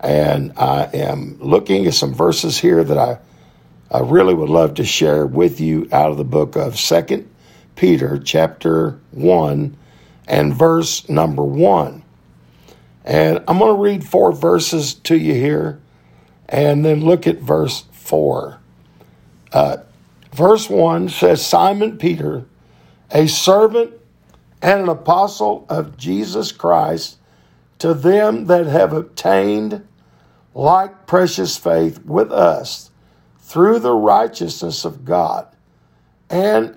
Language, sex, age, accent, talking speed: English, male, 60-79, American, 125 wpm